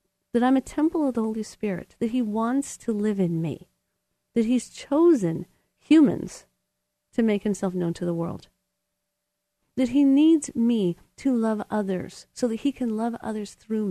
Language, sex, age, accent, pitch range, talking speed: English, female, 40-59, American, 180-235 Hz, 175 wpm